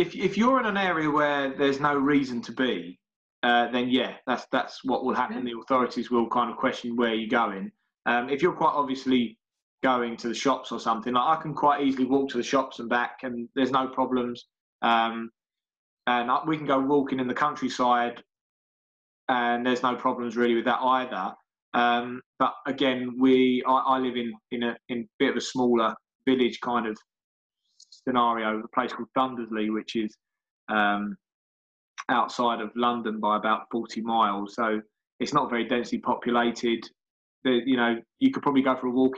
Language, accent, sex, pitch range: English, British, male, 115-130 Hz